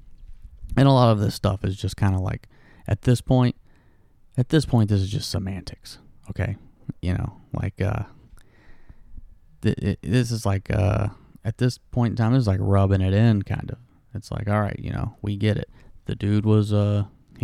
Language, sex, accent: English, male, American